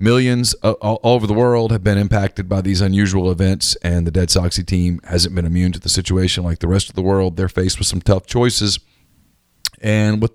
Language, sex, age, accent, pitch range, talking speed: English, male, 40-59, American, 95-110 Hz, 215 wpm